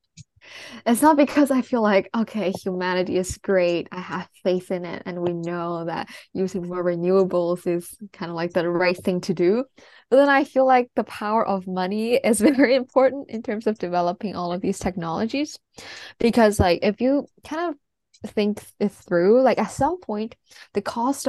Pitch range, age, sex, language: 180-235 Hz, 10-29, female, English